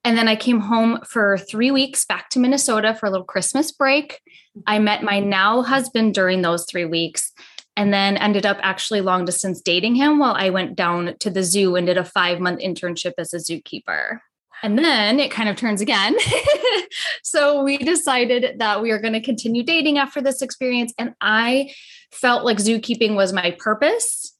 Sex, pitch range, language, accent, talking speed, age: female, 185-245 Hz, English, American, 190 wpm, 10-29